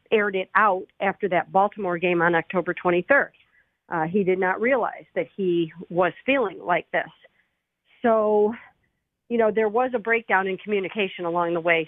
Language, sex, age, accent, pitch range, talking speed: English, female, 50-69, American, 175-215 Hz, 165 wpm